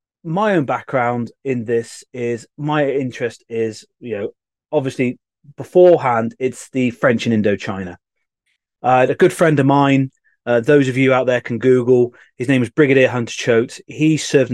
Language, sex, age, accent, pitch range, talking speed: English, male, 30-49, British, 115-135 Hz, 165 wpm